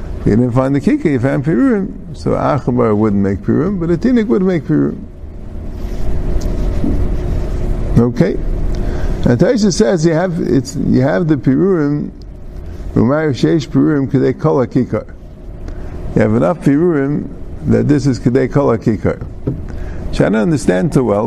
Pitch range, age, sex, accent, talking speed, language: 95-150 Hz, 50-69, male, American, 145 wpm, English